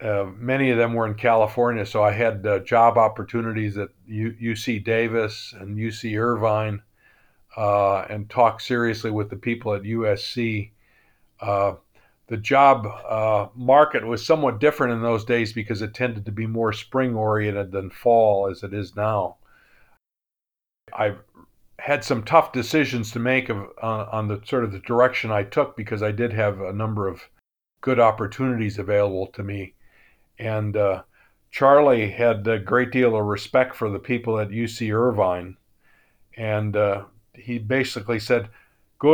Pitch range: 105-125 Hz